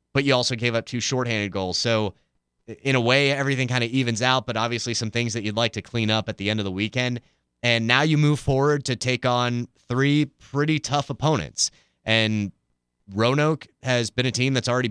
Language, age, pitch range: English, 30-49, 105-125 Hz